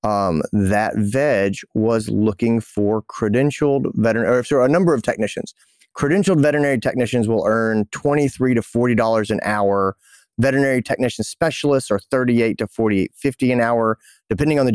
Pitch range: 110-140 Hz